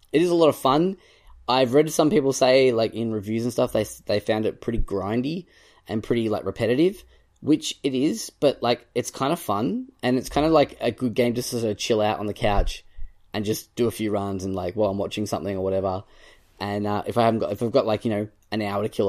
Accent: Australian